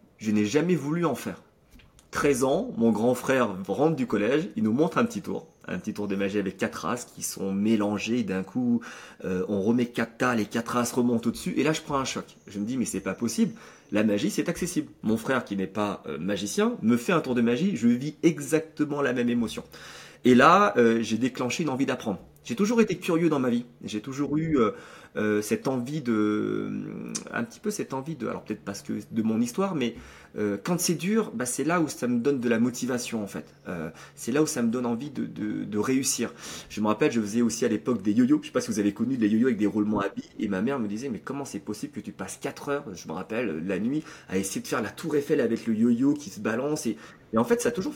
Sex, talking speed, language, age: male, 260 wpm, French, 30-49